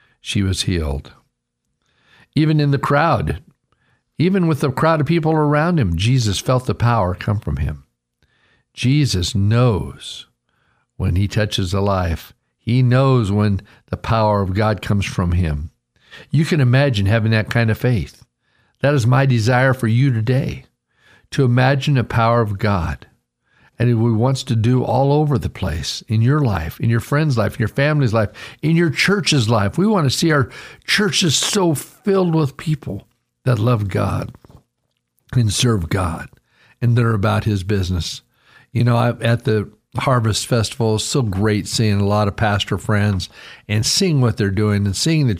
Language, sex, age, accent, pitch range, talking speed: English, male, 50-69, American, 100-135 Hz, 170 wpm